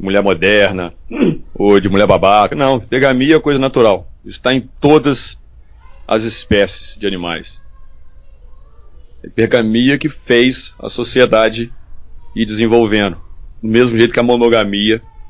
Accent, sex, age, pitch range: Brazilian, male, 40-59, 85-115 Hz